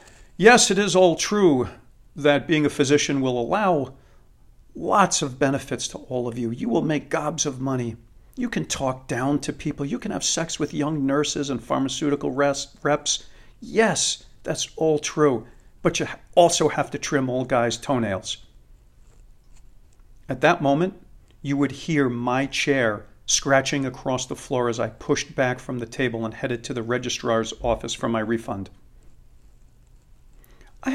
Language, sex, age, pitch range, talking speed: English, male, 50-69, 115-145 Hz, 160 wpm